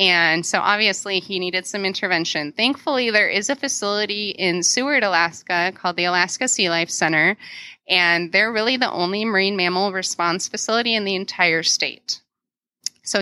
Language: English